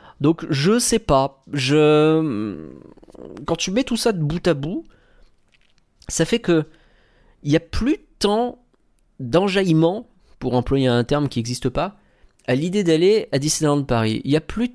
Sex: male